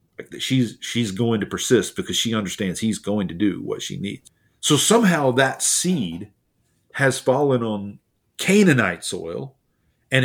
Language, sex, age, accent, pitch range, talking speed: English, male, 40-59, American, 100-125 Hz, 145 wpm